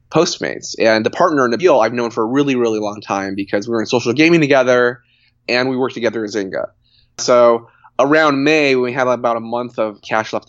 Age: 20-39